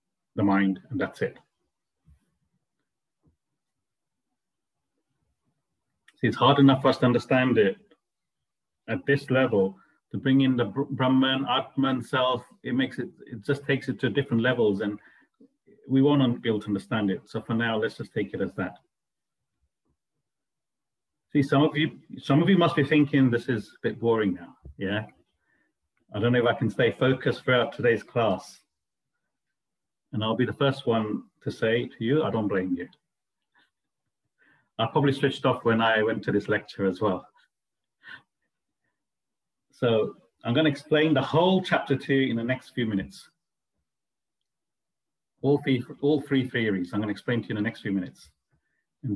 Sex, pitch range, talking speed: male, 110-140 Hz, 165 wpm